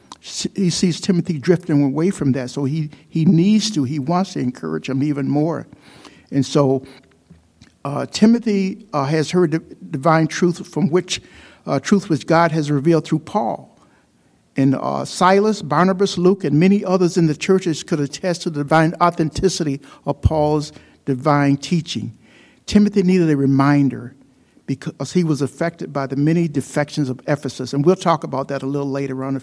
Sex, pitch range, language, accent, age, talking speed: male, 140-175 Hz, English, American, 60-79, 170 wpm